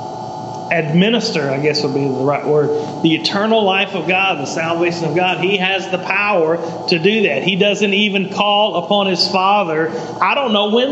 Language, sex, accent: English, male, American